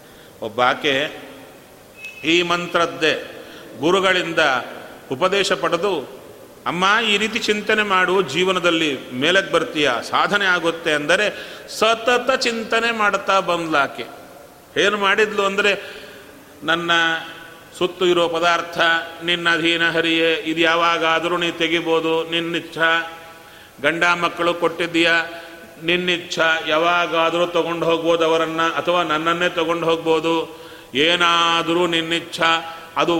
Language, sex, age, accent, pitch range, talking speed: Kannada, male, 40-59, native, 165-210 Hz, 90 wpm